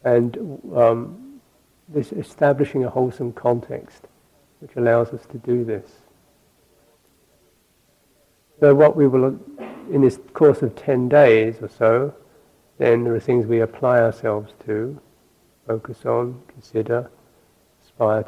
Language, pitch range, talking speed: English, 115-145 Hz, 120 wpm